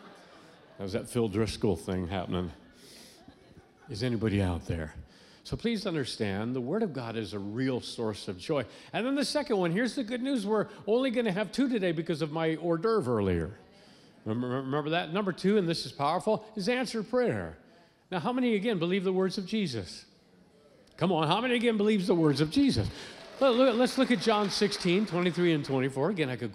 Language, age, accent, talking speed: English, 50-69, American, 195 wpm